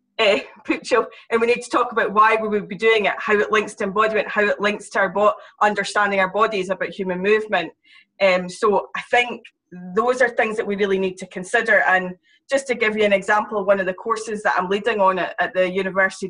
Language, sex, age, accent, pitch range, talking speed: English, female, 20-39, British, 190-225 Hz, 220 wpm